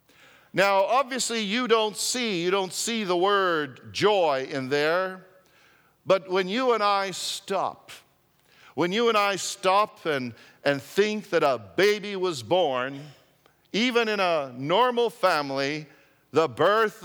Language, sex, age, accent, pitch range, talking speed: English, male, 50-69, American, 145-190 Hz, 135 wpm